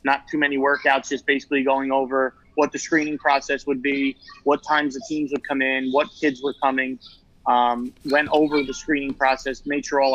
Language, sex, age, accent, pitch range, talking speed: English, male, 30-49, American, 120-140 Hz, 200 wpm